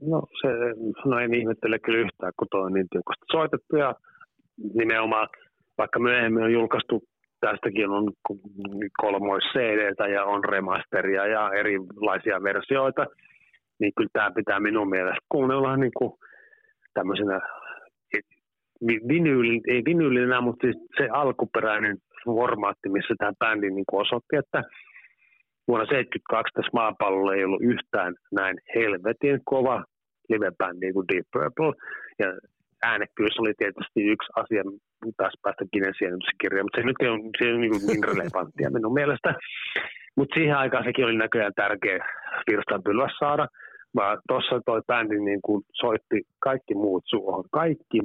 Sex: male